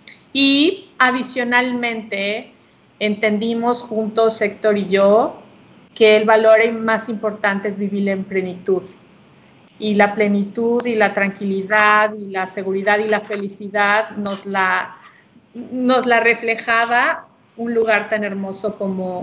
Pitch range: 210-245 Hz